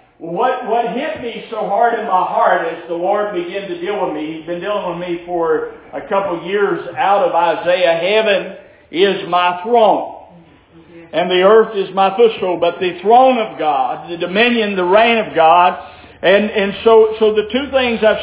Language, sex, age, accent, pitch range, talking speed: English, male, 50-69, American, 195-240 Hz, 190 wpm